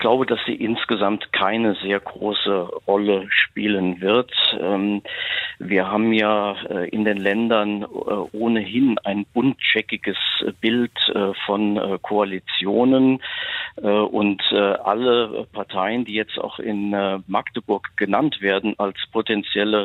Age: 50-69